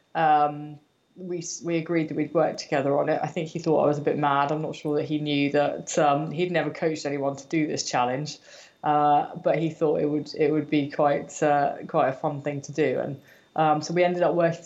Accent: British